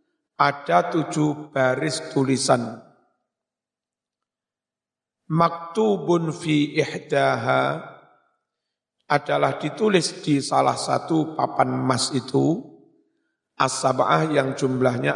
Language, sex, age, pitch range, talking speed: Indonesian, male, 50-69, 130-165 Hz, 65 wpm